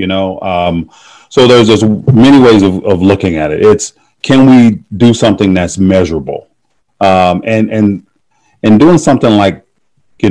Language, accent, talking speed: English, American, 165 wpm